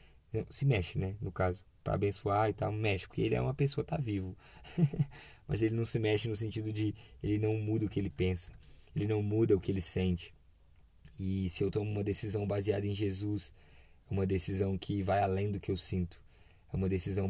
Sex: male